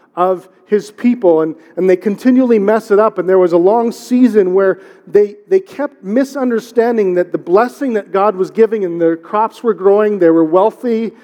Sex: male